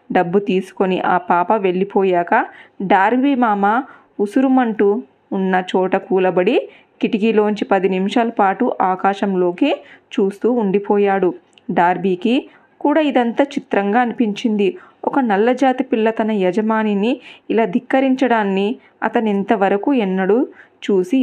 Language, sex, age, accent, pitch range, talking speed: Telugu, female, 20-39, native, 195-245 Hz, 100 wpm